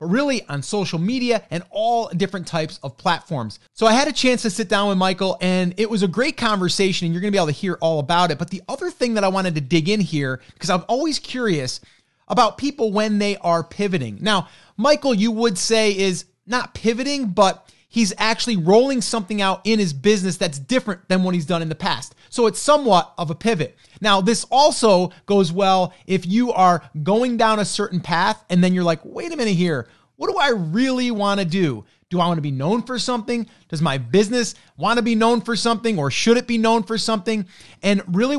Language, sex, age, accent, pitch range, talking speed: English, male, 30-49, American, 170-225 Hz, 220 wpm